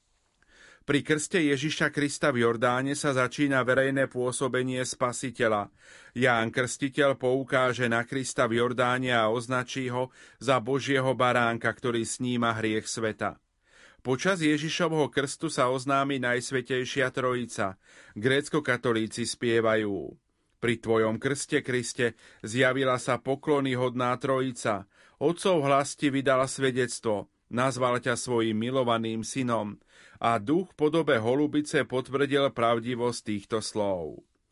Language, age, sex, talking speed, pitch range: Slovak, 40-59, male, 110 wpm, 120-140 Hz